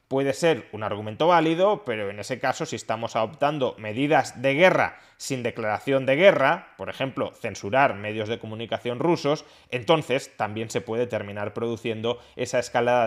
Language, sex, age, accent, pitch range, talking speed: Spanish, male, 20-39, Spanish, 120-160 Hz, 155 wpm